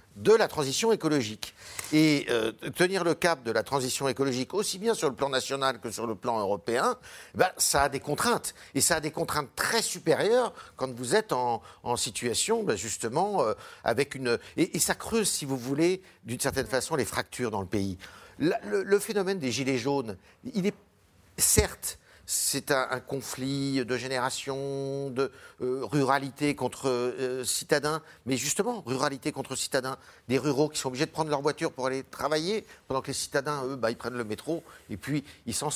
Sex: male